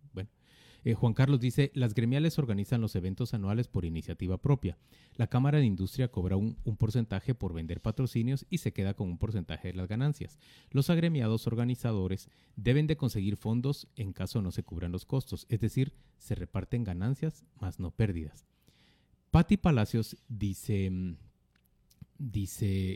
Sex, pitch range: male, 100-135 Hz